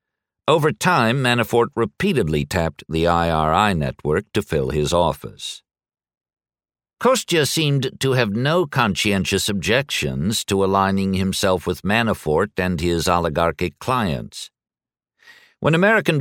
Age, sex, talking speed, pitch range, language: 60-79, male, 110 wpm, 90-120 Hz, English